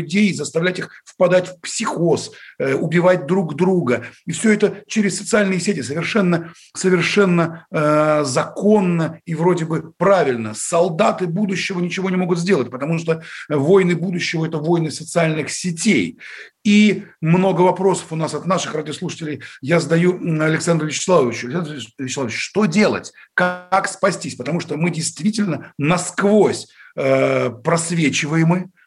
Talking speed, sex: 130 wpm, male